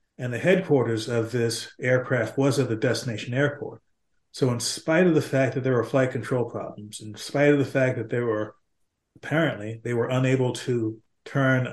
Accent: American